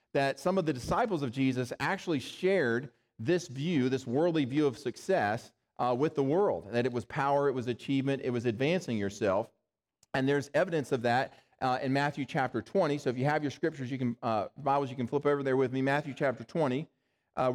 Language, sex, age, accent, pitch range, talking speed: English, male, 40-59, American, 130-155 Hz, 210 wpm